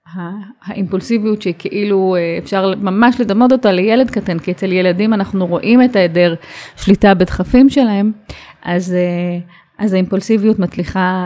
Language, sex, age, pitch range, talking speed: English, female, 30-49, 185-220 Hz, 110 wpm